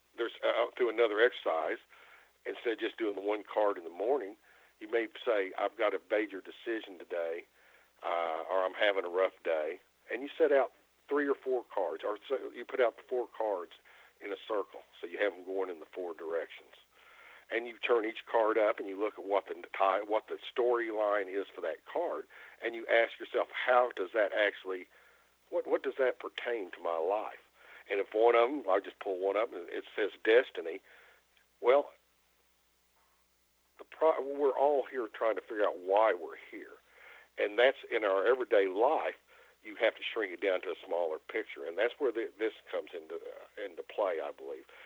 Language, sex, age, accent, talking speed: English, male, 50-69, American, 195 wpm